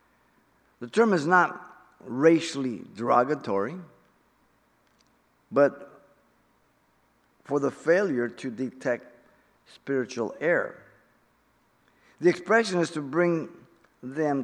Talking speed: 85 wpm